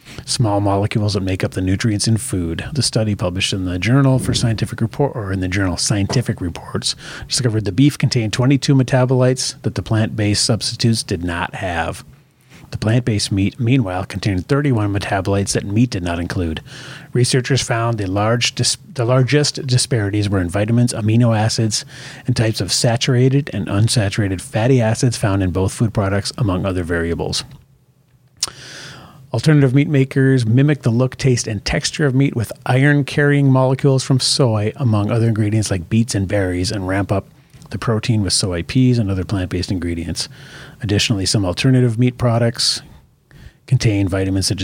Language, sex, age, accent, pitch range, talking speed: English, male, 40-59, American, 100-135 Hz, 165 wpm